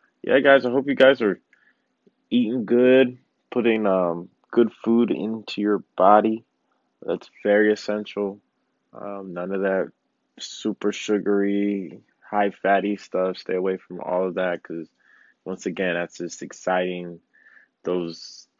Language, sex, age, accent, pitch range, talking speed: English, male, 20-39, American, 95-115 Hz, 130 wpm